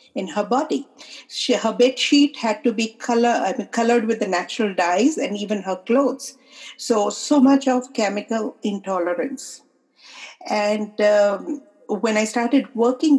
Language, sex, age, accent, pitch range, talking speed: English, female, 50-69, Indian, 195-260 Hz, 155 wpm